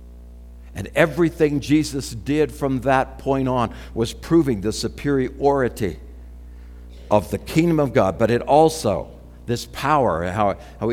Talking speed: 130 wpm